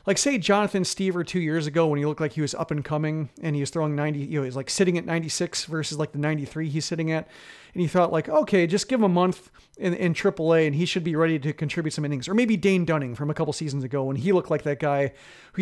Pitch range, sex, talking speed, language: 150-180 Hz, male, 290 wpm, English